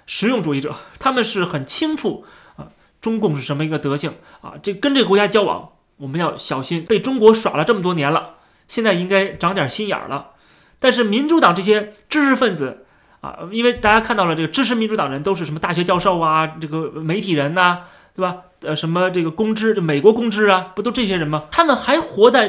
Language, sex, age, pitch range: Chinese, male, 30-49, 155-220 Hz